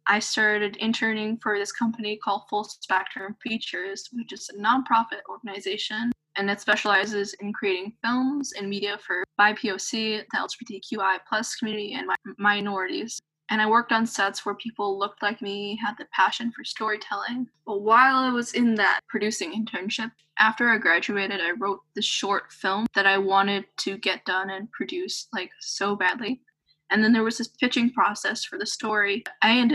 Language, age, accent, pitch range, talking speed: English, 10-29, American, 195-235 Hz, 170 wpm